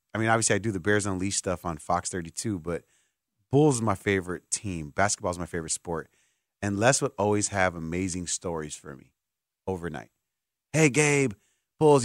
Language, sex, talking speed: English, male, 180 wpm